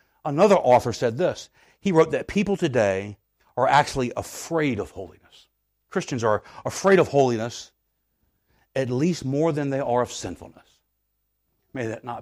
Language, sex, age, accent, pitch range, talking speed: English, male, 60-79, American, 120-170 Hz, 145 wpm